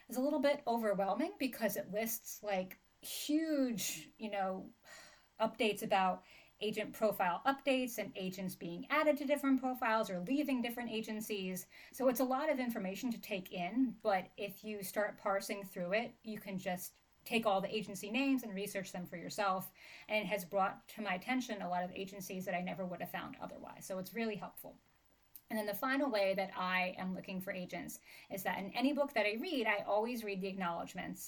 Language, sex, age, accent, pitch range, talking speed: English, female, 30-49, American, 190-235 Hz, 200 wpm